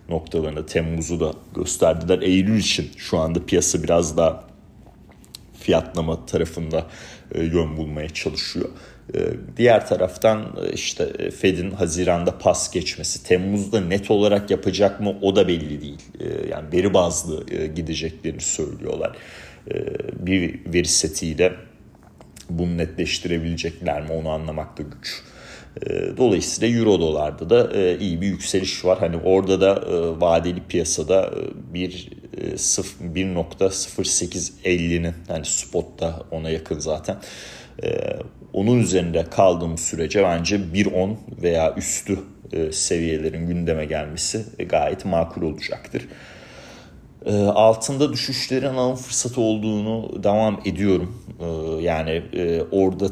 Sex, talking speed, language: male, 100 wpm, Turkish